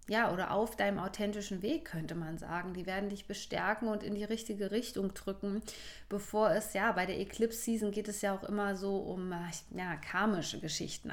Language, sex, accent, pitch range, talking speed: German, female, German, 180-210 Hz, 190 wpm